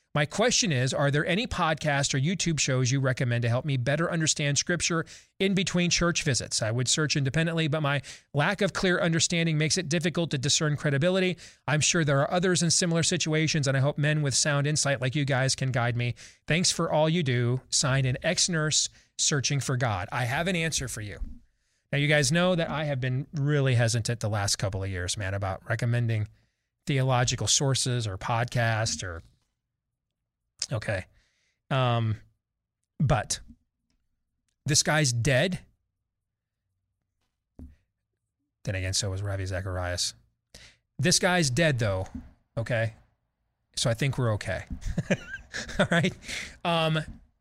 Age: 40-59